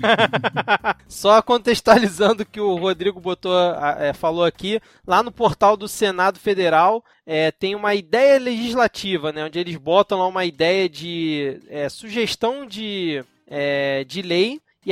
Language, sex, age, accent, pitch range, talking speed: Portuguese, male, 20-39, Brazilian, 190-245 Hz, 145 wpm